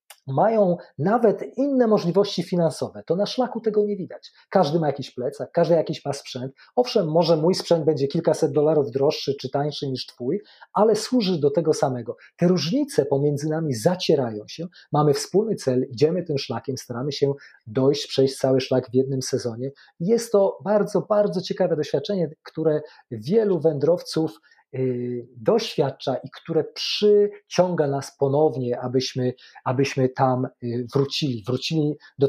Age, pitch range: 40-59, 130-180 Hz